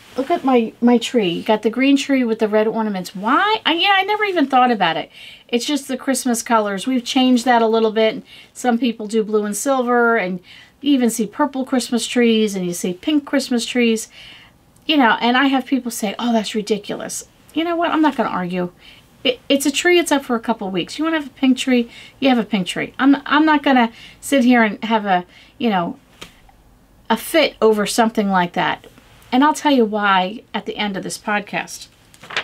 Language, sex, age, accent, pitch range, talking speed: English, female, 40-59, American, 205-260 Hz, 220 wpm